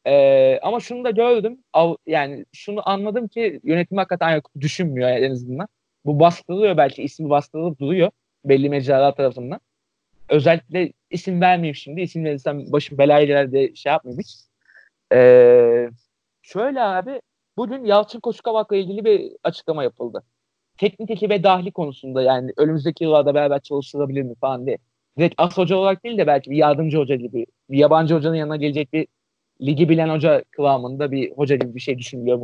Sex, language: male, Turkish